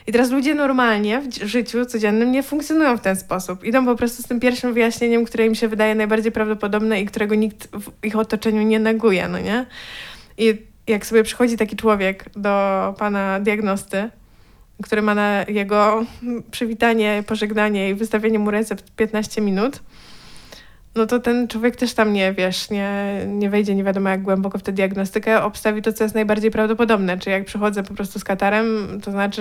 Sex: female